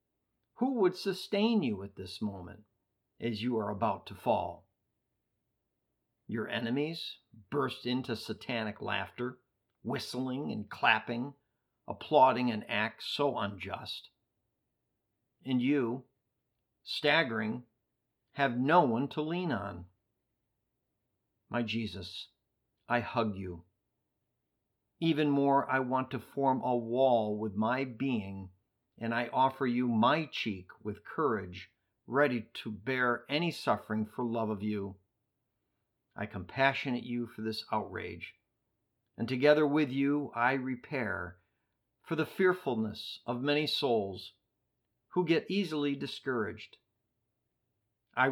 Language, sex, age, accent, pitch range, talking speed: English, male, 50-69, American, 110-135 Hz, 115 wpm